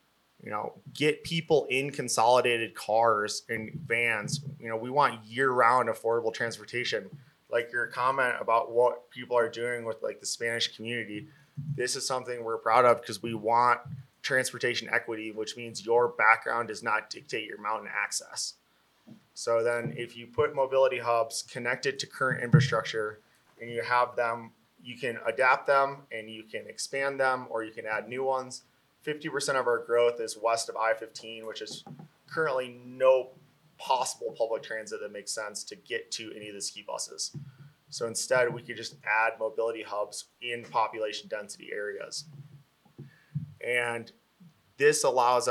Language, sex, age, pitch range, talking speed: English, male, 20-39, 115-145 Hz, 160 wpm